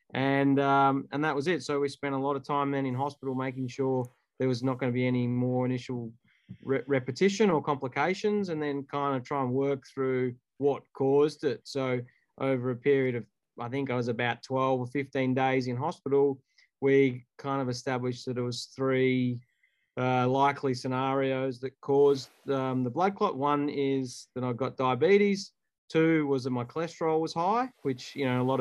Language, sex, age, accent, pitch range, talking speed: English, male, 20-39, Australian, 130-140 Hz, 195 wpm